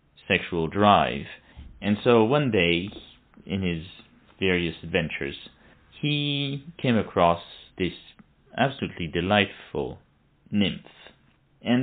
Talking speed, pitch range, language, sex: 90 wpm, 85-110 Hz, English, male